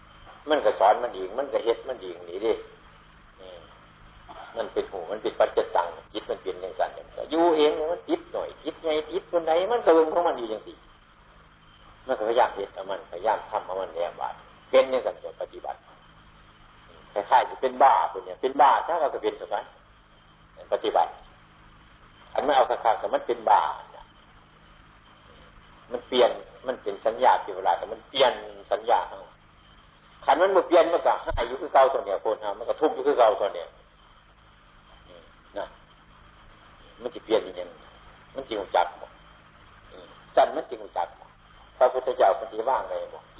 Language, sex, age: Thai, male, 60-79